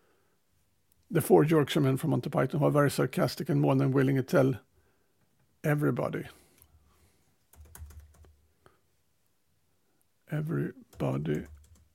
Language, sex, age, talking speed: Swedish, male, 60-79, 90 wpm